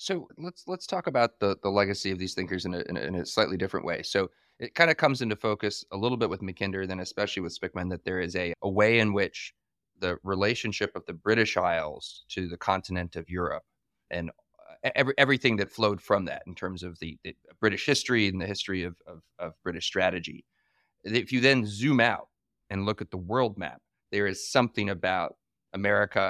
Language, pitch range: English, 90-110 Hz